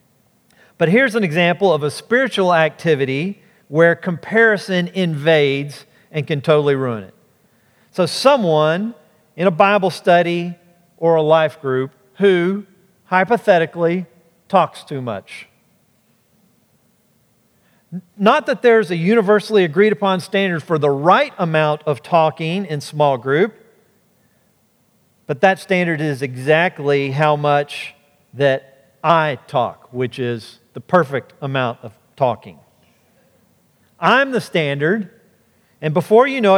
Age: 40-59